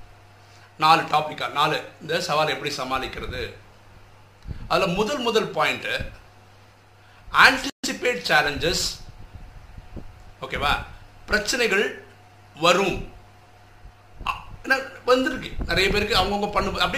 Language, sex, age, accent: Tamil, male, 50-69, native